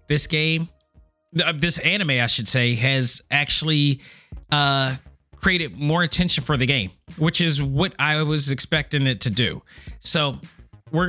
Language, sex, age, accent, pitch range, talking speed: English, male, 20-39, American, 125-155 Hz, 145 wpm